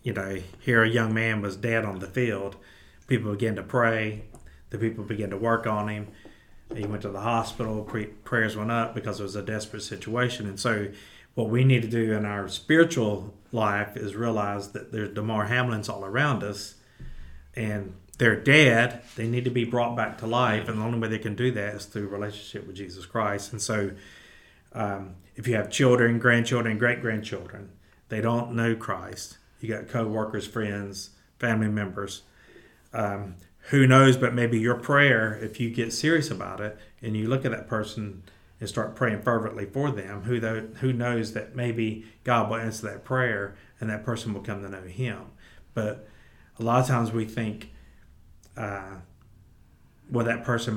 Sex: male